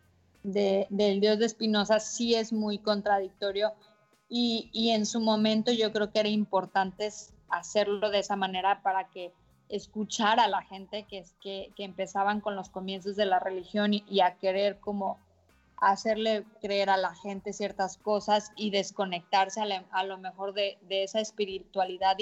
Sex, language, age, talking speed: female, English, 20-39, 170 wpm